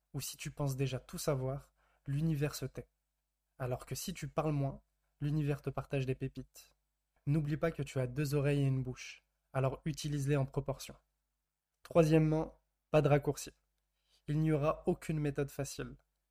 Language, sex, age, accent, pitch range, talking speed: French, male, 20-39, French, 135-150 Hz, 165 wpm